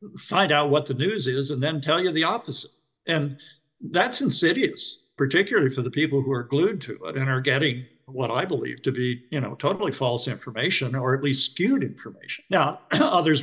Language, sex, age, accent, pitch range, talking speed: English, male, 60-79, American, 125-150 Hz, 195 wpm